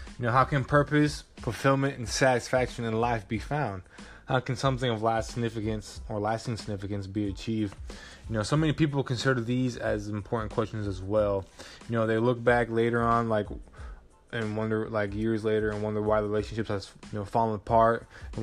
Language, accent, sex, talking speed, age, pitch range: English, American, male, 190 wpm, 20-39, 105-125 Hz